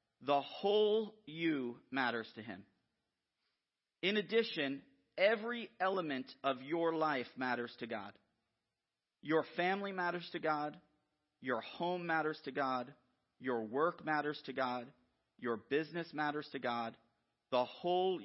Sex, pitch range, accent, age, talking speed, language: male, 130-170 Hz, American, 40-59, 125 wpm, English